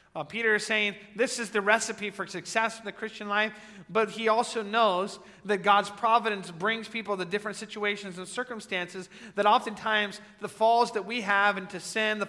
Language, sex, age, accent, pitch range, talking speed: English, male, 40-59, American, 160-210 Hz, 180 wpm